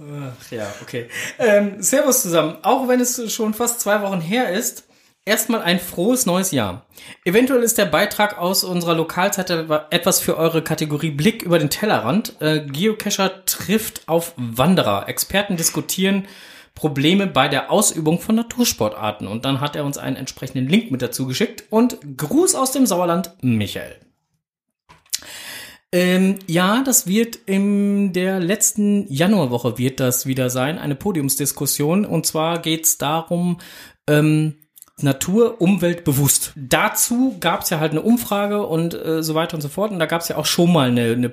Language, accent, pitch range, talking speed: German, German, 130-195 Hz, 160 wpm